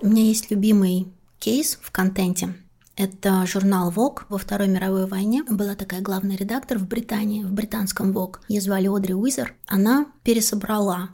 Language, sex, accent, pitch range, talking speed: Russian, female, native, 180-220 Hz, 155 wpm